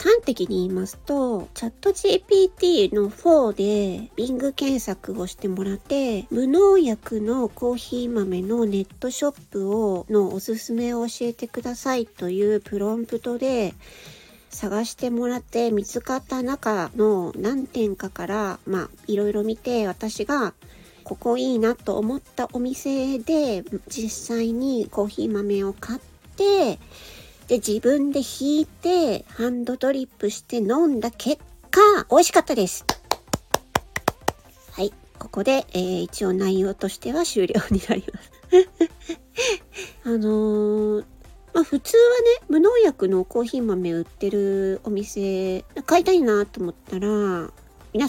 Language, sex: Japanese, female